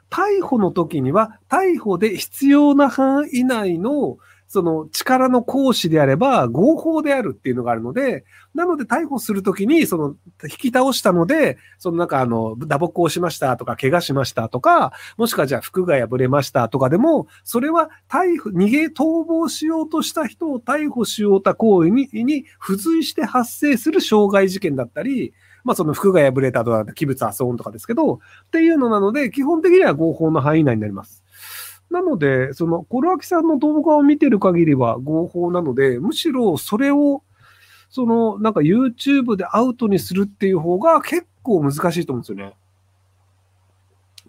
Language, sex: Japanese, male